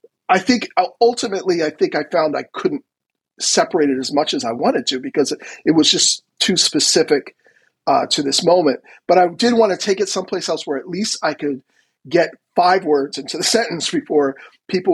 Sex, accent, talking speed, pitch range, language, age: male, American, 200 wpm, 150-240 Hz, English, 40-59